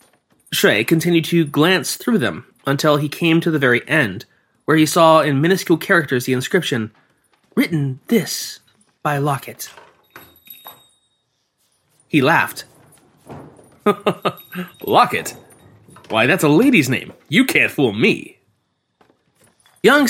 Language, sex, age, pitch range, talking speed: English, male, 20-39, 130-170 Hz, 115 wpm